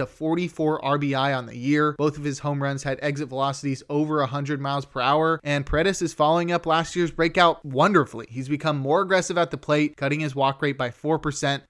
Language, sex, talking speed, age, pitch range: English, male, 215 wpm, 20-39, 140-165 Hz